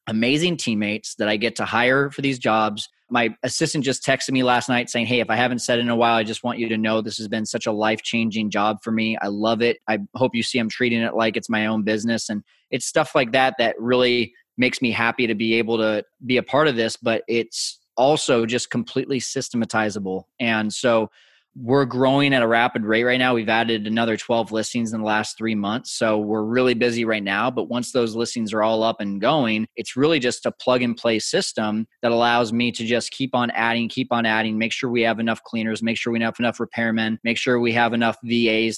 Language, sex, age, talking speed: English, male, 20-39, 235 wpm